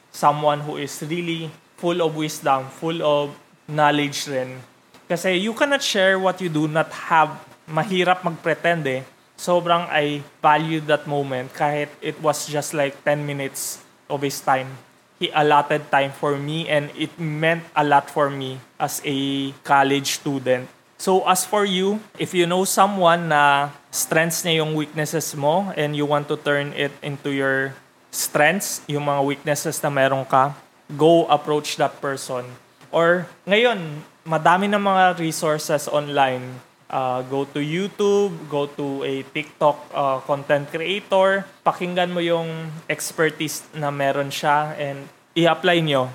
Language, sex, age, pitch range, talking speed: English, male, 20-39, 140-175 Hz, 150 wpm